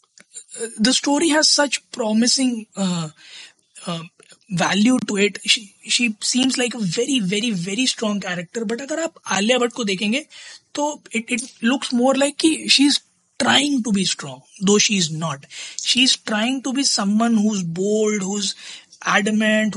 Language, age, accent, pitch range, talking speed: Hindi, 20-39, native, 190-250 Hz, 125 wpm